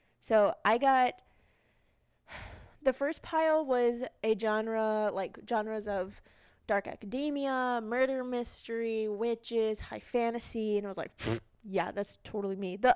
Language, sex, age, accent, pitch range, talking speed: English, female, 20-39, American, 205-260 Hz, 130 wpm